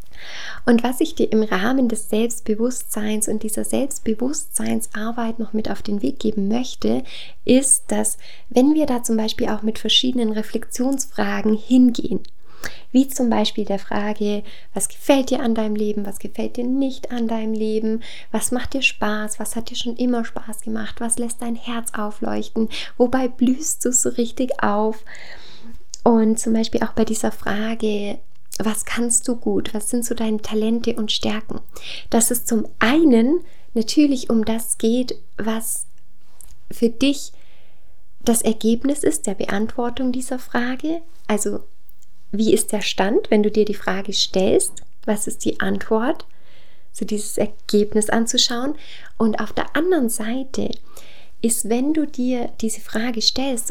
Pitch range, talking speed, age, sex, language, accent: 215-250 Hz, 155 wpm, 20-39, female, German, German